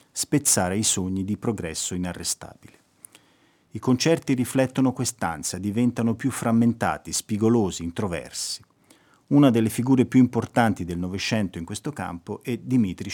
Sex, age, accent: male, 40-59, native